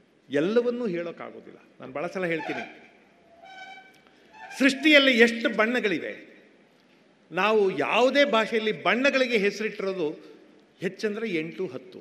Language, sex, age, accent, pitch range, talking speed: Kannada, male, 50-69, native, 205-265 Hz, 85 wpm